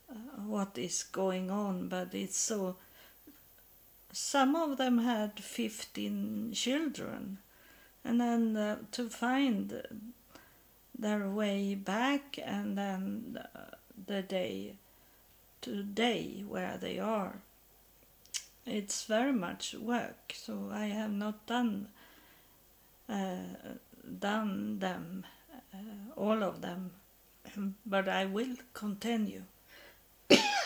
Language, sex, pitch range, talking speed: English, female, 195-235 Hz, 100 wpm